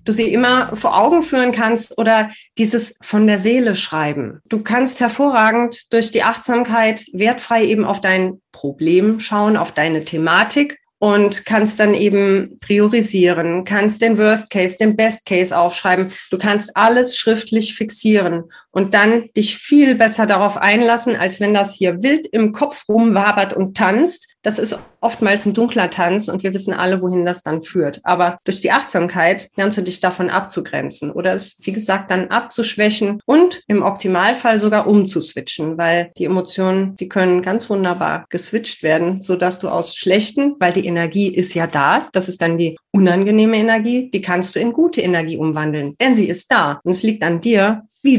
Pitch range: 180-225 Hz